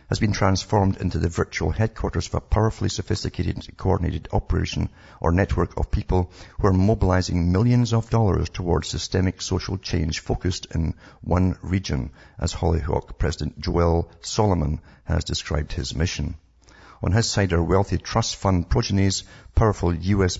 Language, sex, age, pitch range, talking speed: English, male, 50-69, 85-100 Hz, 145 wpm